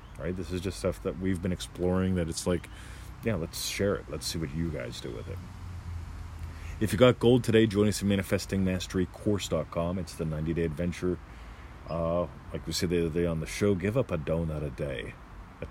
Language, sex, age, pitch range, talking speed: English, male, 40-59, 80-95 Hz, 205 wpm